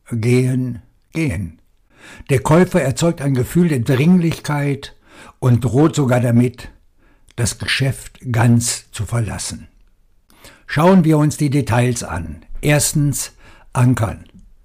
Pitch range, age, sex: 115-150 Hz, 60-79, male